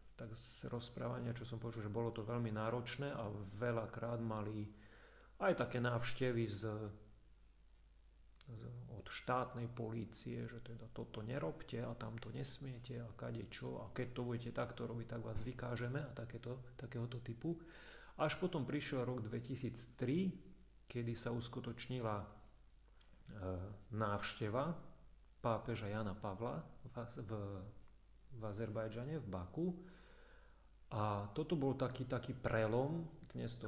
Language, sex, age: Slovak, male, 40-59